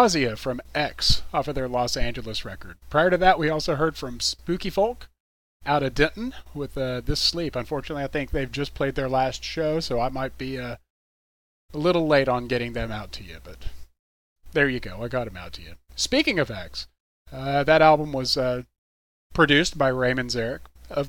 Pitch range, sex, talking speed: 95-145 Hz, male, 200 wpm